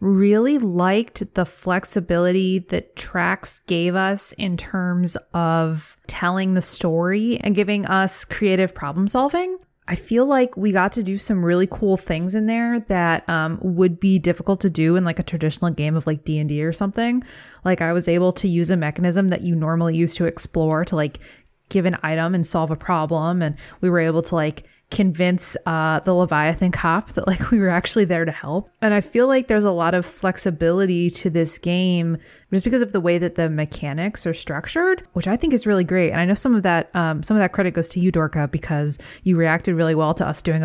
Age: 20-39